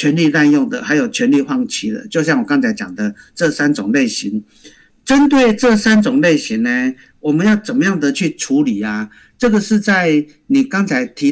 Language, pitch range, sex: Chinese, 160-250 Hz, male